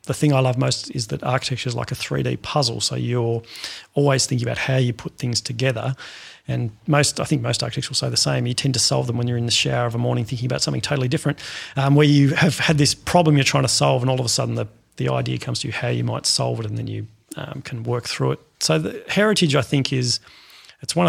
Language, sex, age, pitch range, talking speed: English, male, 30-49, 115-140 Hz, 270 wpm